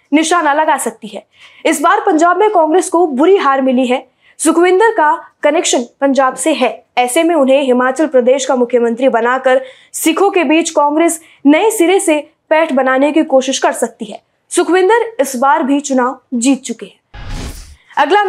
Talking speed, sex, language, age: 65 wpm, female, Hindi, 20-39